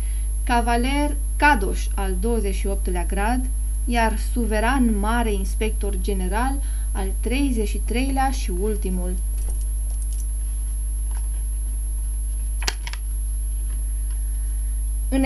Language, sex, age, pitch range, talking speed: English, female, 20-39, 190-235 Hz, 60 wpm